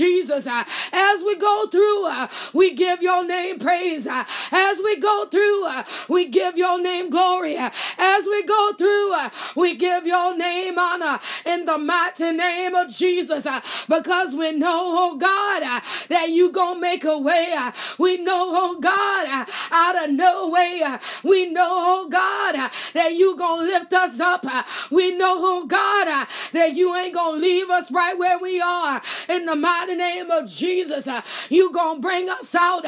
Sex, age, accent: female, 30-49, American